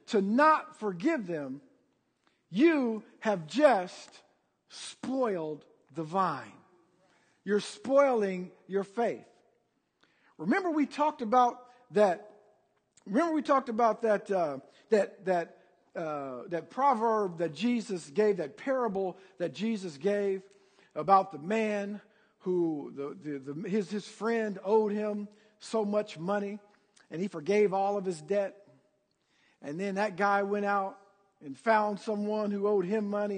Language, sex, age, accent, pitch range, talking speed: English, male, 50-69, American, 185-220 Hz, 130 wpm